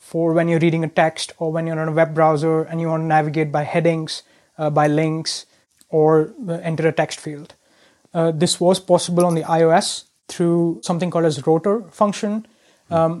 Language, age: English, 20-39